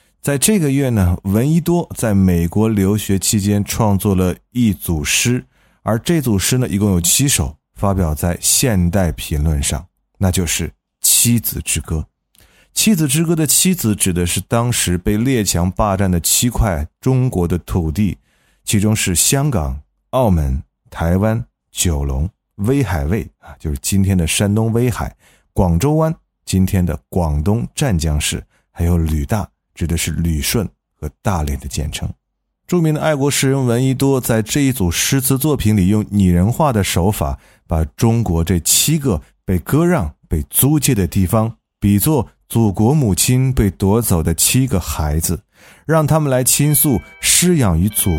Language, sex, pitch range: Chinese, male, 85-125 Hz